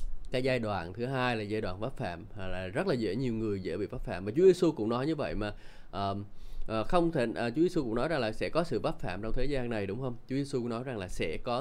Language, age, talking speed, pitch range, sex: Vietnamese, 20-39, 300 wpm, 105-130 Hz, male